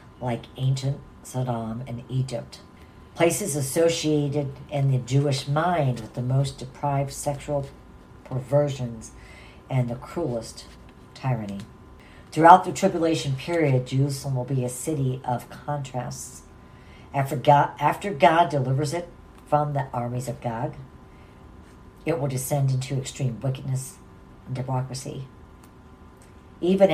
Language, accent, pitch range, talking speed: English, American, 125-145 Hz, 115 wpm